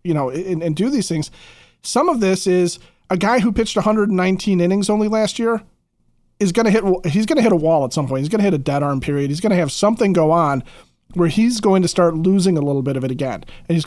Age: 40-59